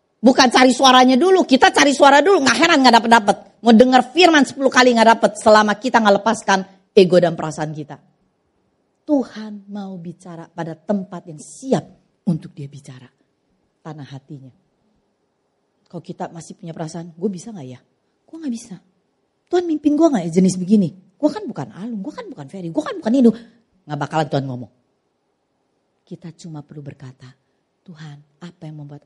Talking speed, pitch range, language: 170 wpm, 150-255 Hz, Indonesian